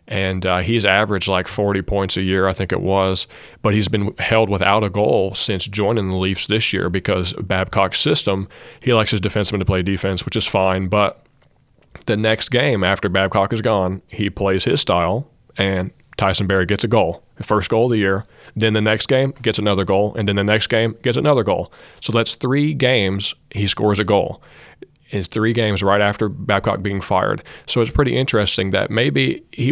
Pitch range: 95-115 Hz